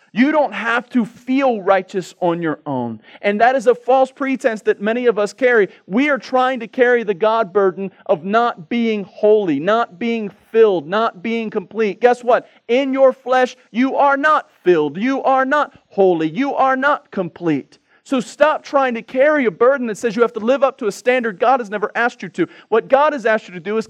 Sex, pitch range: male, 170-245 Hz